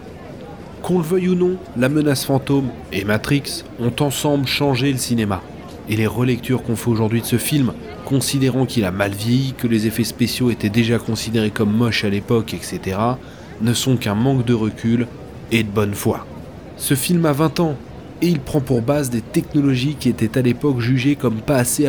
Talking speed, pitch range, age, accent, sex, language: 195 wpm, 110-140 Hz, 30-49, French, male, French